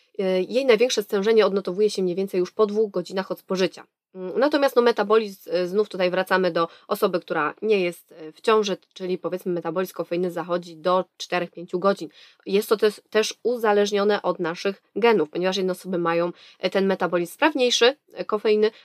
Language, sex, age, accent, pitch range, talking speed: Polish, female, 20-39, native, 175-220 Hz, 155 wpm